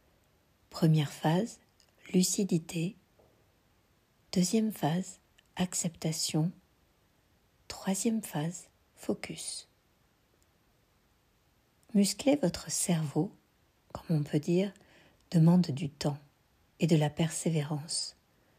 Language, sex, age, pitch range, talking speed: French, female, 60-79, 150-190 Hz, 75 wpm